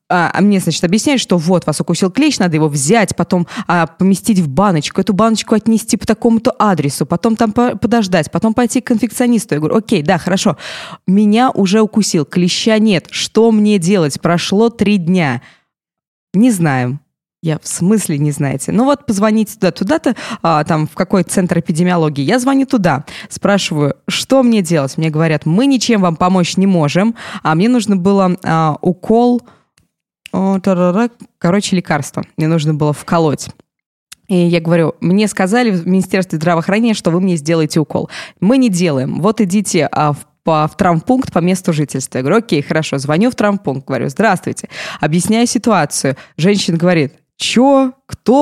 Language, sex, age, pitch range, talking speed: Russian, female, 20-39, 160-220 Hz, 160 wpm